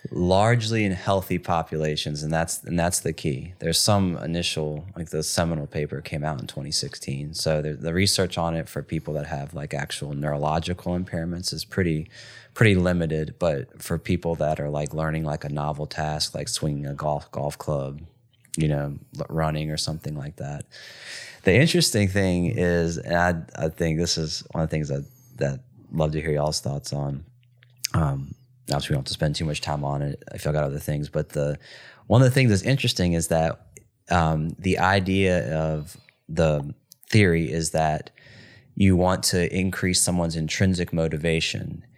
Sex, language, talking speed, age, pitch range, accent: male, English, 180 wpm, 30-49, 75-95 Hz, American